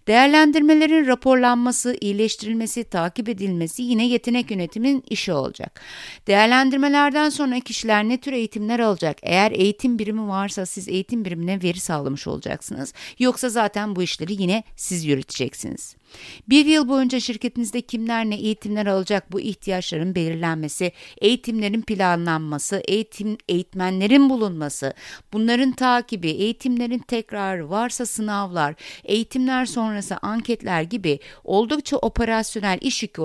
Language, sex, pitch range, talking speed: Turkish, female, 190-245 Hz, 115 wpm